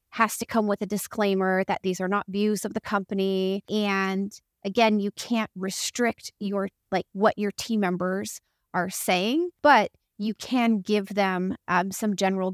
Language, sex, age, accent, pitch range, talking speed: English, female, 30-49, American, 185-215 Hz, 165 wpm